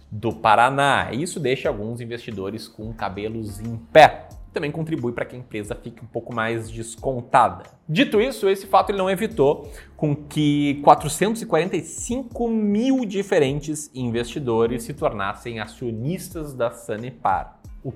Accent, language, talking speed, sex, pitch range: Brazilian, Portuguese, 135 wpm, male, 115-180 Hz